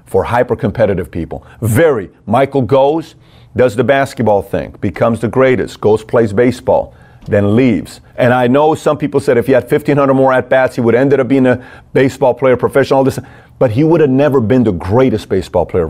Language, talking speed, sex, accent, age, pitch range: English, 205 wpm, male, American, 40-59, 110-135 Hz